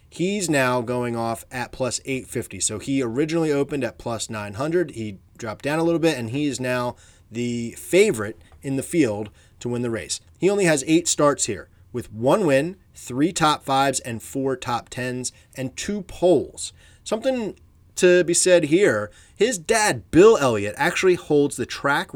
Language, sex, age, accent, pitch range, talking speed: English, male, 30-49, American, 105-150 Hz, 175 wpm